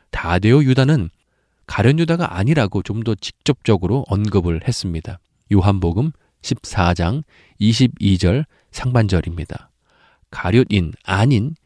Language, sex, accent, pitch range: Korean, male, native, 90-125 Hz